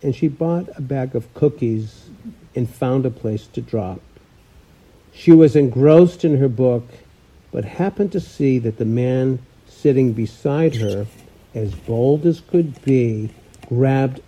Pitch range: 120-165 Hz